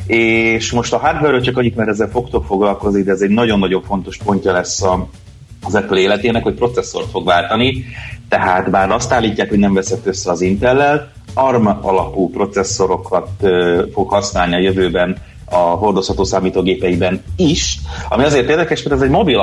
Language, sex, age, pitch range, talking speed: Hungarian, male, 30-49, 90-110 Hz, 165 wpm